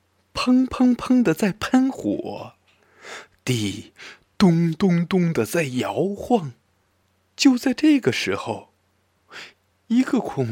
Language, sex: Chinese, male